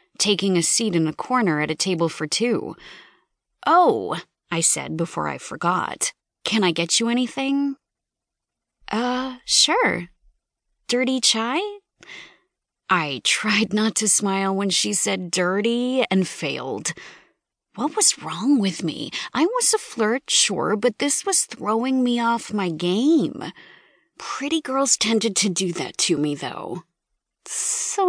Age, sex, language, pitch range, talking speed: 30-49, female, English, 175-250 Hz, 140 wpm